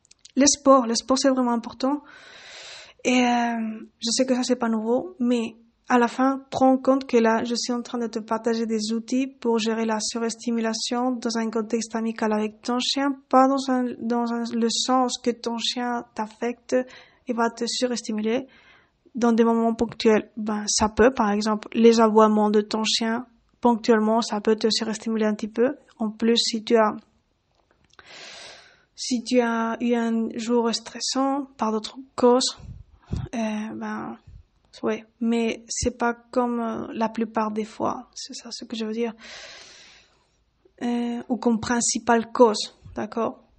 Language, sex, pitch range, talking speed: French, female, 225-250 Hz, 170 wpm